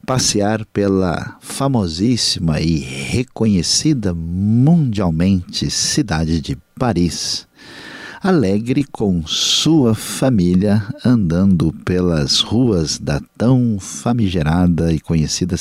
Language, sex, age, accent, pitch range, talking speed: Portuguese, male, 50-69, Brazilian, 90-120 Hz, 80 wpm